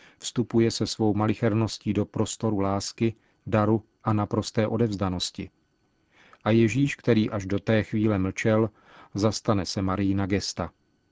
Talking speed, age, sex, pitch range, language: 130 wpm, 40-59, male, 100-115 Hz, Czech